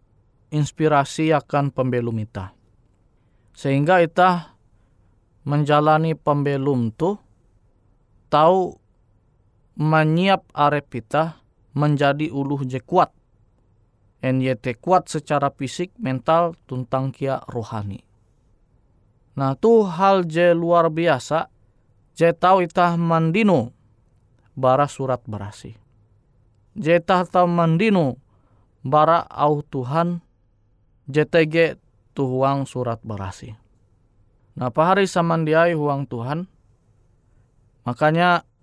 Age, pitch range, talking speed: 20-39, 110-155 Hz, 85 wpm